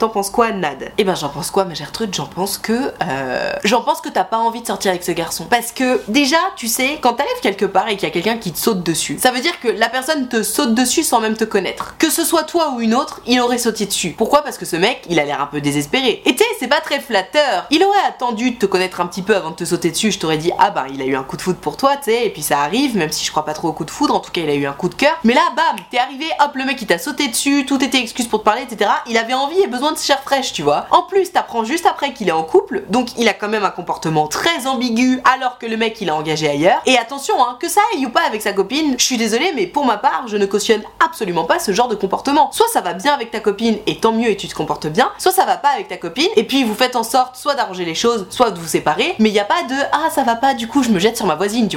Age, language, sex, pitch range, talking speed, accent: 20-39, French, female, 190-280 Hz, 320 wpm, French